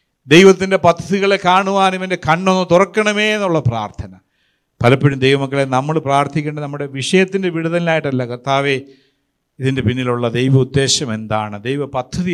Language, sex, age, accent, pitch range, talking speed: Malayalam, male, 50-69, native, 125-185 Hz, 105 wpm